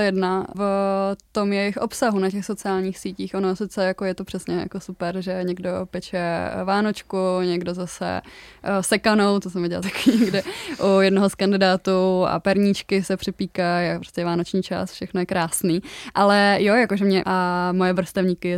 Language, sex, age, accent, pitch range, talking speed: Czech, female, 20-39, native, 180-200 Hz, 165 wpm